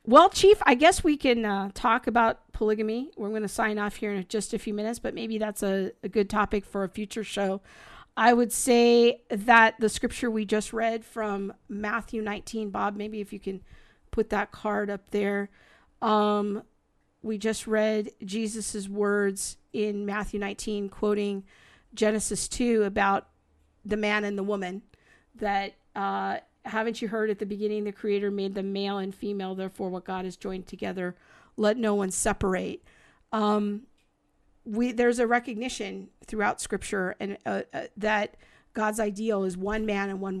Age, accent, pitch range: 50-69, American, 200-220 Hz